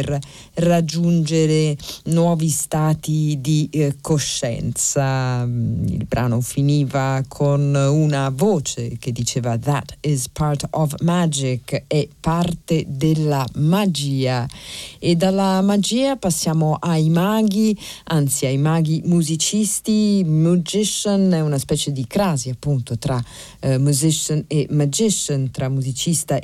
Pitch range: 140-170 Hz